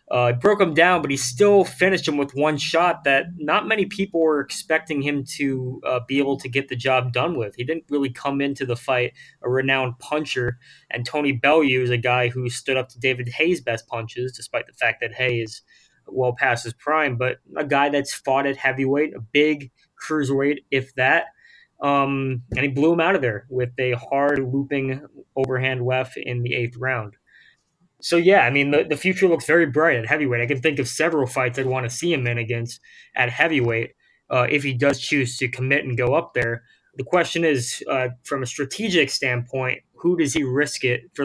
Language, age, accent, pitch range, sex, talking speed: English, 20-39, American, 125-150 Hz, male, 210 wpm